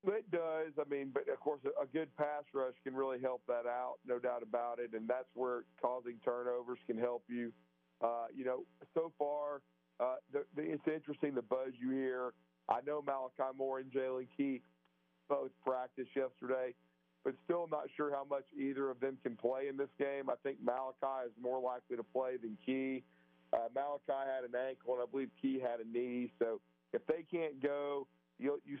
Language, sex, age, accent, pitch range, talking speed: English, male, 40-59, American, 120-140 Hz, 195 wpm